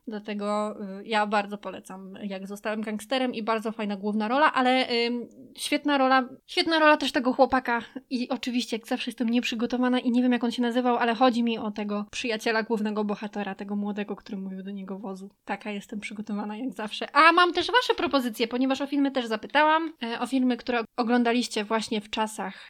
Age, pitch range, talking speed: 20-39, 215-260 Hz, 185 wpm